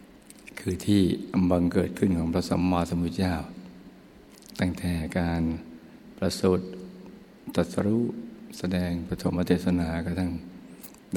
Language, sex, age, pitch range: Thai, male, 60-79, 85-95 Hz